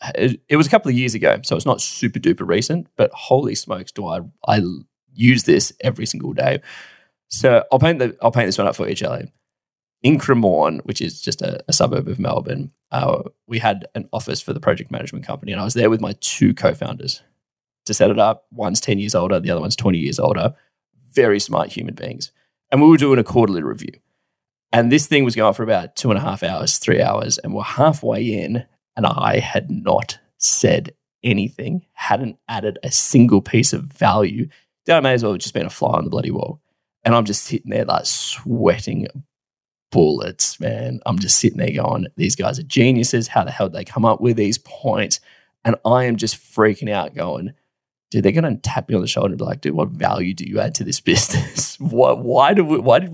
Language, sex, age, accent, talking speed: English, male, 10-29, Australian, 220 wpm